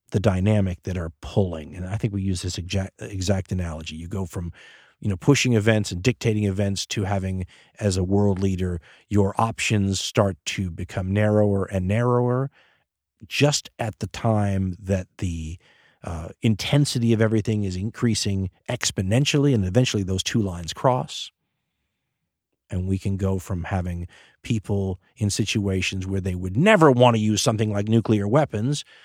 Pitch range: 95-120 Hz